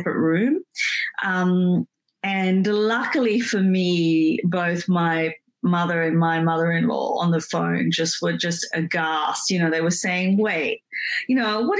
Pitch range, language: 170-230 Hz, English